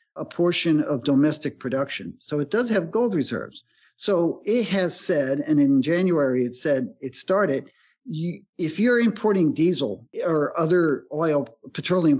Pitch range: 145-200 Hz